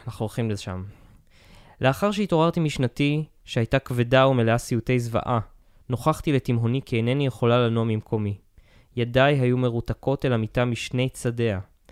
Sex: male